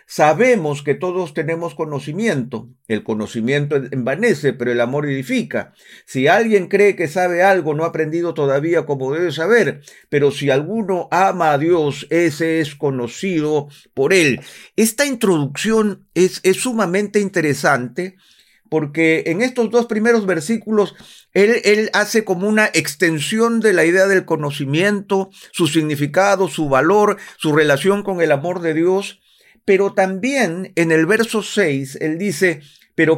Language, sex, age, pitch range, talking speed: Spanish, male, 50-69, 150-205 Hz, 145 wpm